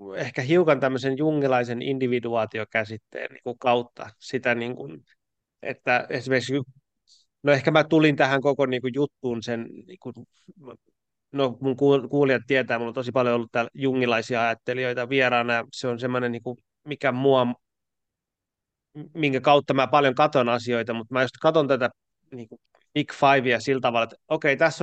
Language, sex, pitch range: Finnish, male, 115-140 Hz